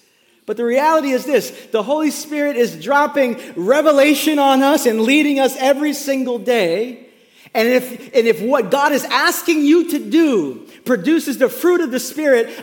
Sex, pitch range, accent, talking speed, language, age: male, 190-275 Hz, American, 170 wpm, English, 40-59